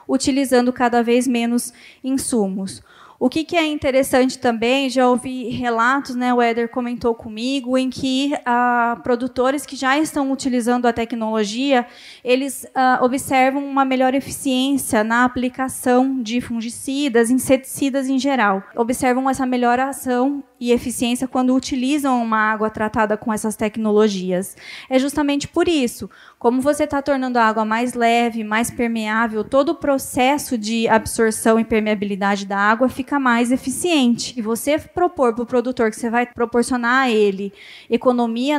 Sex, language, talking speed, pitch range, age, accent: female, Portuguese, 150 wpm, 230-265 Hz, 20-39, Brazilian